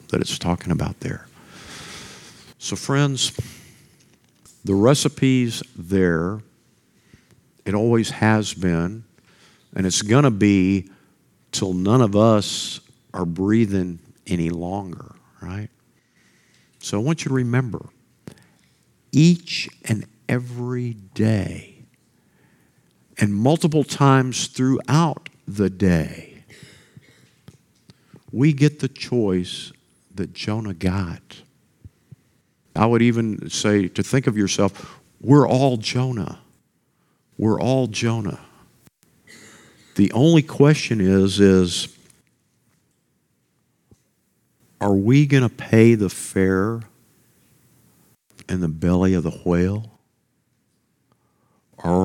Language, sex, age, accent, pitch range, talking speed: English, male, 50-69, American, 95-130 Hz, 95 wpm